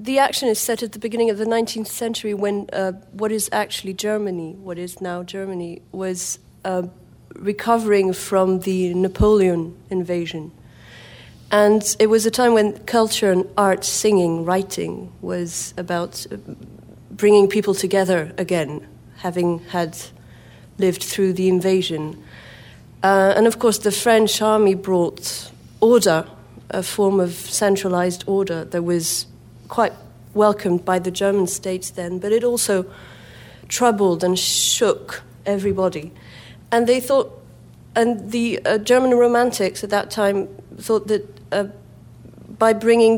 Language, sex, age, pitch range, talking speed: English, female, 40-59, 180-215 Hz, 135 wpm